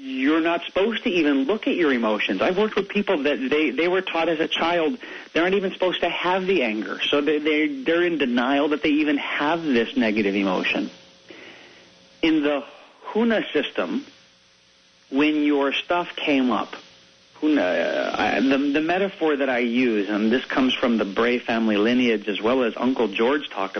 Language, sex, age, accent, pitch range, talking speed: English, male, 40-59, American, 120-175 Hz, 185 wpm